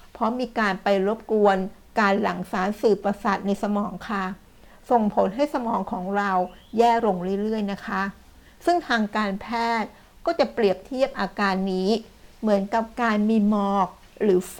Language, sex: Thai, female